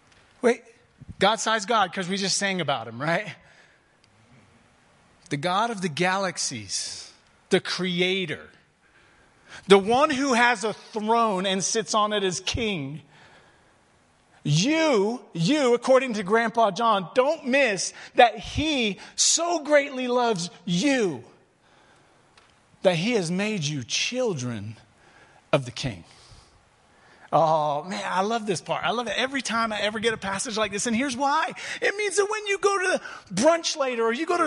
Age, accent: 40-59, American